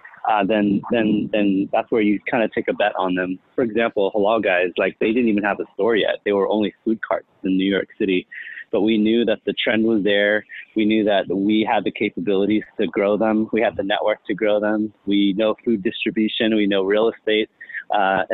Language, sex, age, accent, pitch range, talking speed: English, male, 30-49, American, 100-115 Hz, 225 wpm